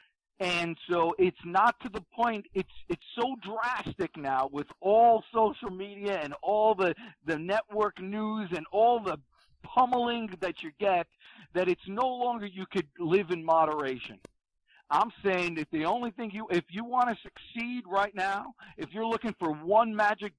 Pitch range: 165-215 Hz